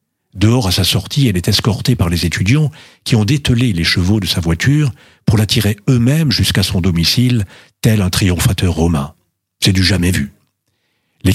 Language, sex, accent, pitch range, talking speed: French, male, French, 90-120 Hz, 180 wpm